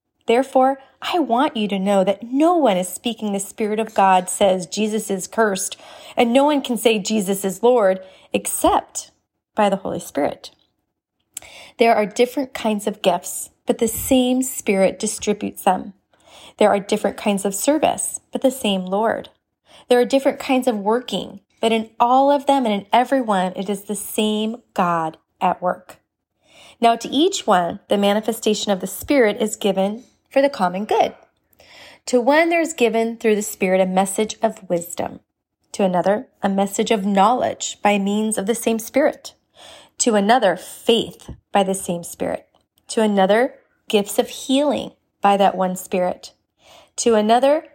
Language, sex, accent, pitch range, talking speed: English, female, American, 195-255 Hz, 165 wpm